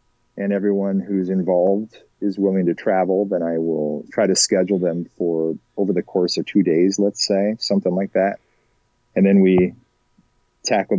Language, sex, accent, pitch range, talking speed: English, male, American, 85-100 Hz, 170 wpm